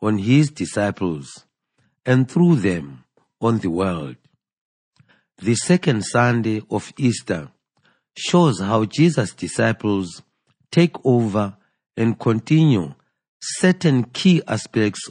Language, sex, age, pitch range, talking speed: English, male, 50-69, 100-135 Hz, 100 wpm